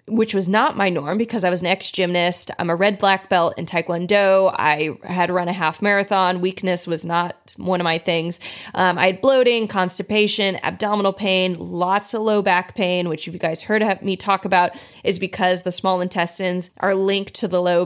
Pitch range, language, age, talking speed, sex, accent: 175-215 Hz, English, 20-39, 200 wpm, female, American